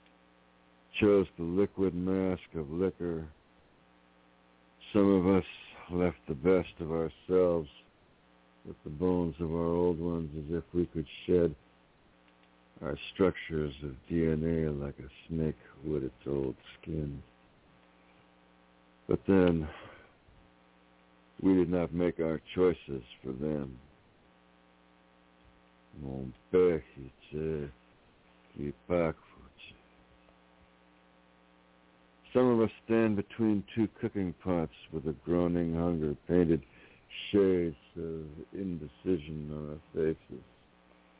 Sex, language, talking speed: male, English, 100 wpm